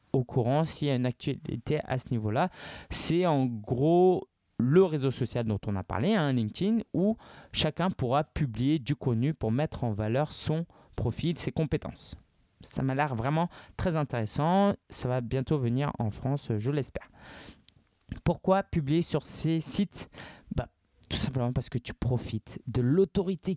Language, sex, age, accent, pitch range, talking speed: French, male, 20-39, French, 120-165 Hz, 170 wpm